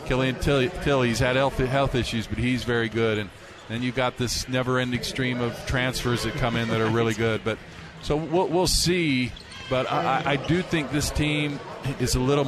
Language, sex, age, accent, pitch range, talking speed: English, male, 40-59, American, 115-135 Hz, 200 wpm